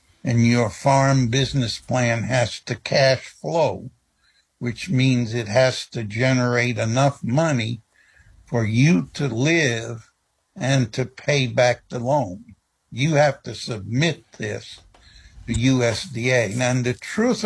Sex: male